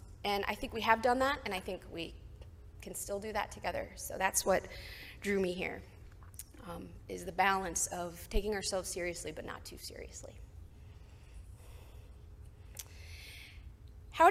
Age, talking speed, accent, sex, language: 20-39, 145 wpm, American, female, English